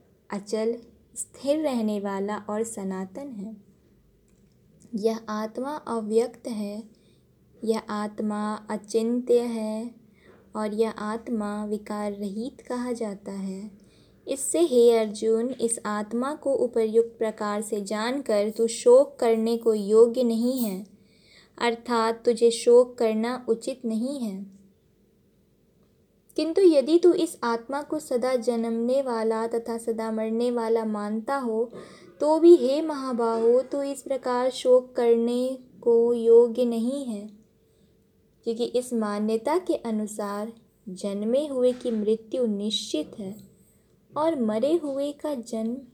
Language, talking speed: Hindi, 120 wpm